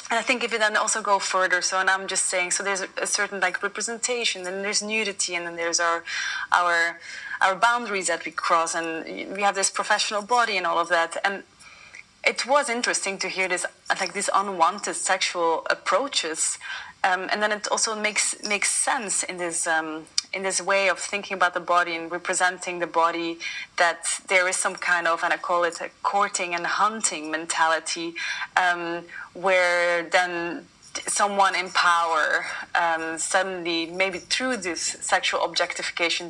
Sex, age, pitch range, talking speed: female, 20-39, 170-205 Hz, 175 wpm